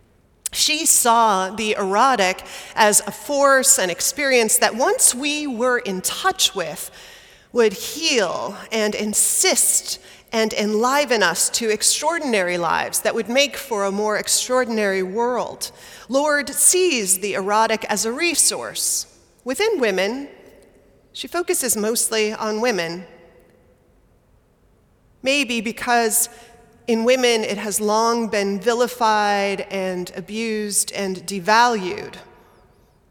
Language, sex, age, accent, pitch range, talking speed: English, female, 30-49, American, 195-245 Hz, 110 wpm